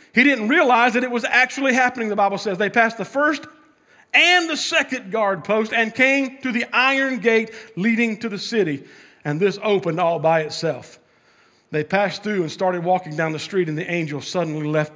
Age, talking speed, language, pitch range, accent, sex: 40-59, 200 wpm, English, 190-250 Hz, American, male